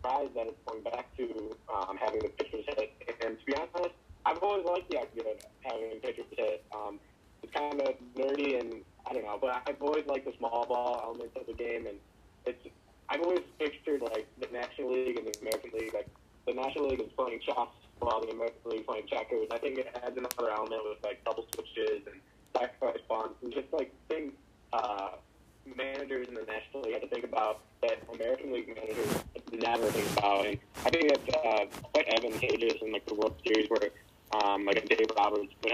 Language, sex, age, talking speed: English, male, 20-39, 210 wpm